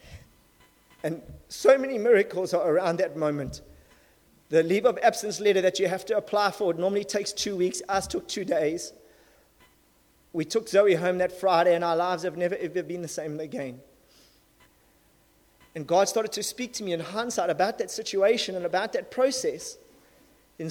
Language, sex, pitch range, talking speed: English, male, 175-220 Hz, 175 wpm